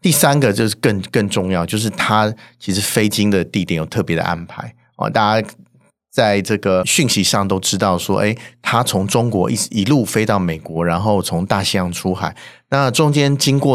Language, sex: Chinese, male